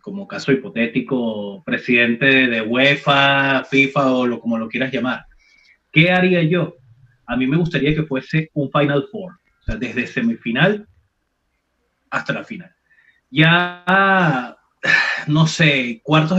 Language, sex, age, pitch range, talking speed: Spanish, male, 30-49, 125-170 Hz, 130 wpm